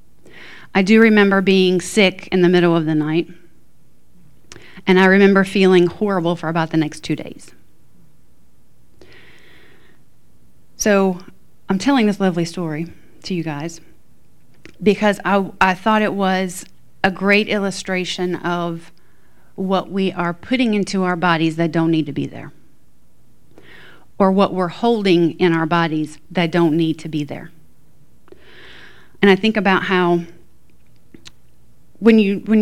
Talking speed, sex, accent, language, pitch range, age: 140 wpm, female, American, English, 165-190 Hz, 40-59